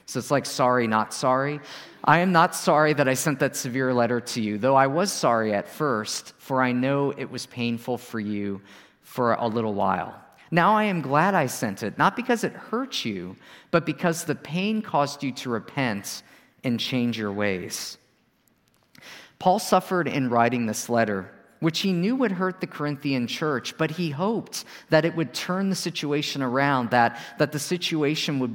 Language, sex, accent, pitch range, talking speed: English, male, American, 125-175 Hz, 185 wpm